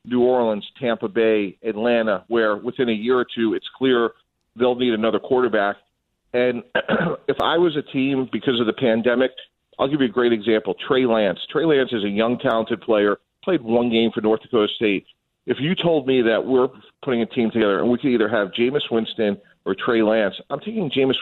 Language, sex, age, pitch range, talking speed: English, male, 40-59, 105-125 Hz, 205 wpm